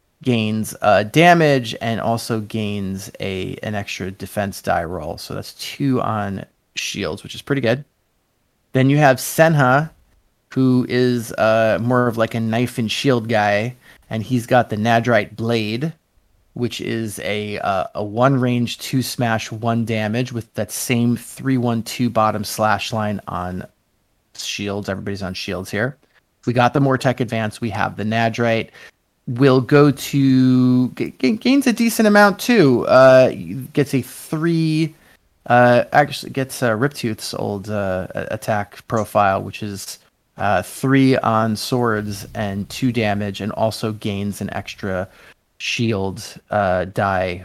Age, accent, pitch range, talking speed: 30-49, American, 105-130 Hz, 150 wpm